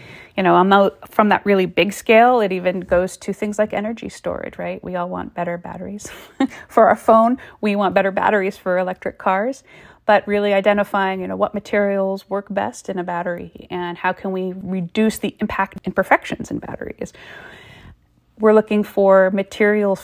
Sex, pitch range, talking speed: female, 180-210 Hz, 170 wpm